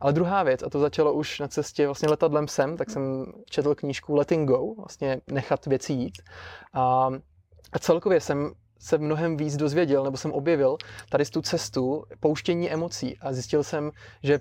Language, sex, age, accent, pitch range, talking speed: Czech, male, 20-39, native, 140-160 Hz, 180 wpm